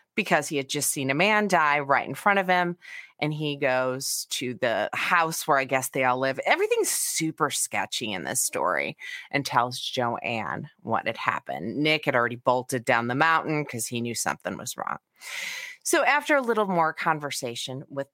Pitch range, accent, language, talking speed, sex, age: 135-185 Hz, American, English, 190 wpm, female, 30-49